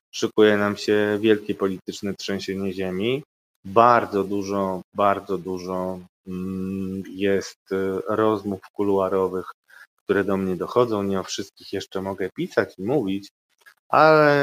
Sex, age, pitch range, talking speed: male, 20-39, 95-110 Hz, 110 wpm